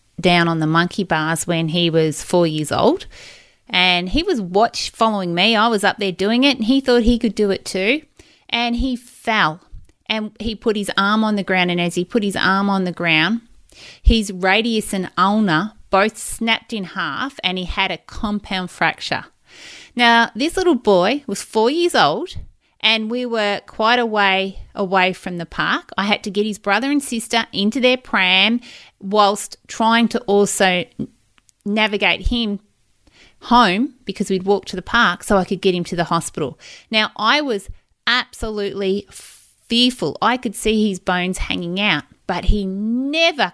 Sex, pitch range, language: female, 185-230 Hz, English